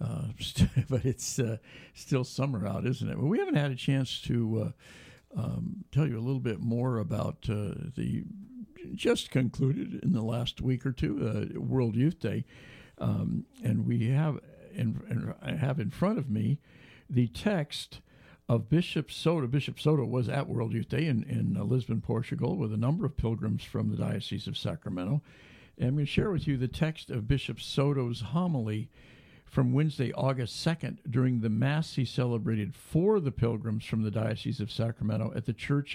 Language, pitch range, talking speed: English, 115-140 Hz, 180 wpm